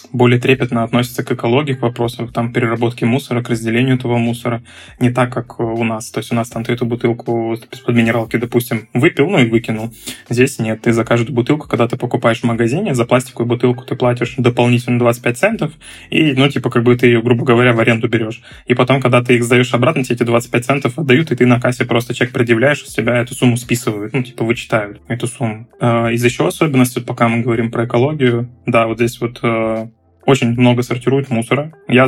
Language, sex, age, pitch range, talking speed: Russian, male, 20-39, 115-130 Hz, 210 wpm